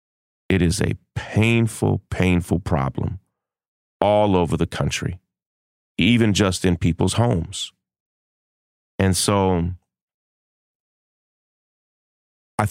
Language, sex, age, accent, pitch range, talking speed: English, male, 30-49, American, 80-105 Hz, 85 wpm